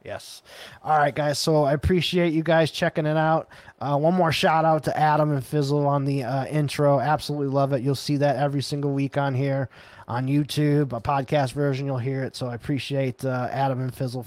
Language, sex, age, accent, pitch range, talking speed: English, male, 20-39, American, 130-145 Hz, 215 wpm